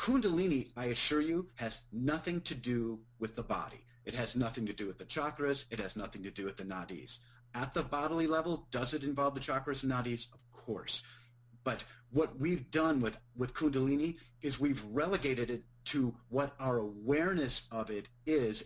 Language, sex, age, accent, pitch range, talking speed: English, male, 40-59, American, 120-150 Hz, 185 wpm